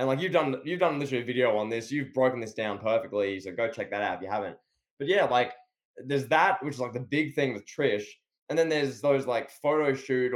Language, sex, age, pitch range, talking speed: English, male, 10-29, 120-145 Hz, 255 wpm